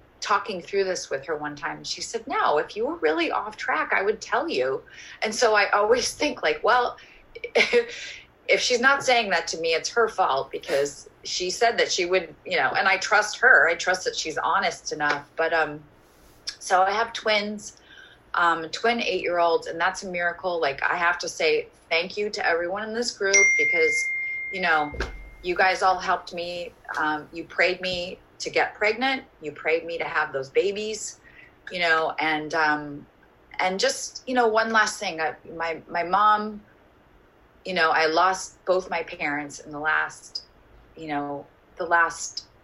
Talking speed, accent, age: 185 wpm, American, 30-49